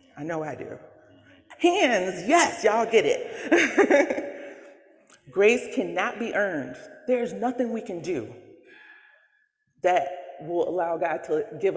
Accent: American